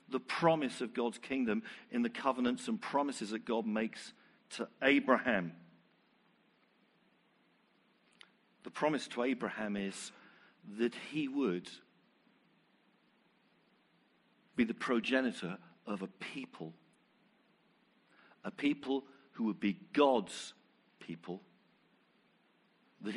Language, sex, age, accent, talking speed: English, male, 50-69, British, 95 wpm